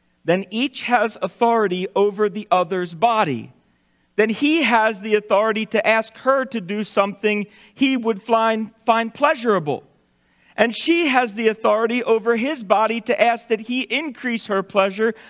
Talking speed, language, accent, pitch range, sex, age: 150 wpm, English, American, 190-255 Hz, male, 40-59